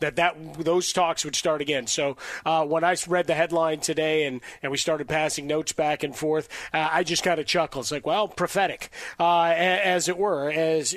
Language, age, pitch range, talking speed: English, 30-49, 140-165 Hz, 220 wpm